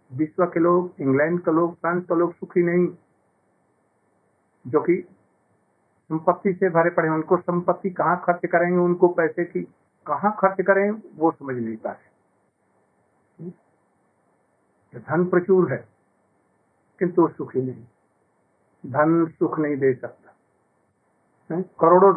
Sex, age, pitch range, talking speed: male, 60-79, 145-180 Hz, 120 wpm